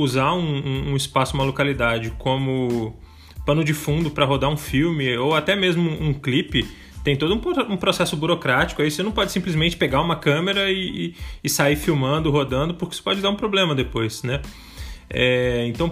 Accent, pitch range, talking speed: Brazilian, 125-160 Hz, 190 wpm